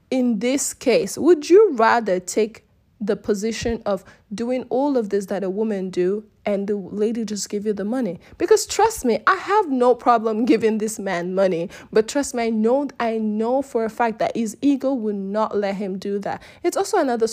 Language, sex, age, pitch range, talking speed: English, female, 20-39, 200-260 Hz, 200 wpm